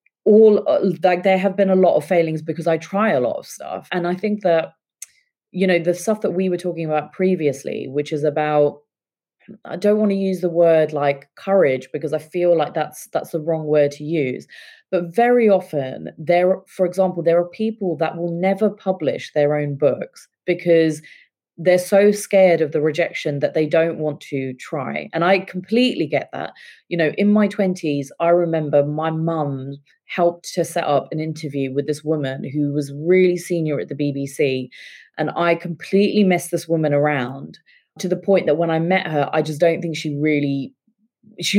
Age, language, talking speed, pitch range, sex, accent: 30-49, English, 195 wpm, 150-185 Hz, female, British